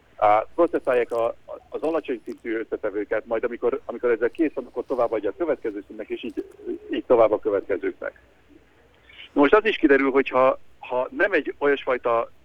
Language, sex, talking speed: Hungarian, male, 155 wpm